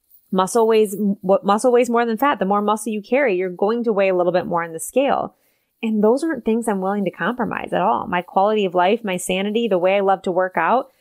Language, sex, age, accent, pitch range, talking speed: English, female, 20-39, American, 185-230 Hz, 250 wpm